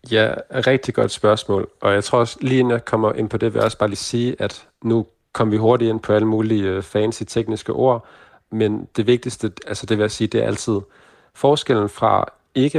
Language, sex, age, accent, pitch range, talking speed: Danish, male, 40-59, native, 100-115 Hz, 220 wpm